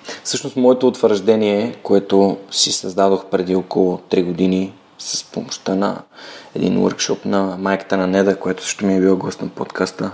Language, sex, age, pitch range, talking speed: Bulgarian, male, 20-39, 95-120 Hz, 160 wpm